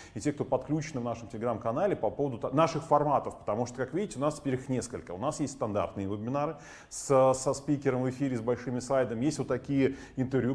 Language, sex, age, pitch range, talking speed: Russian, male, 30-49, 115-140 Hz, 210 wpm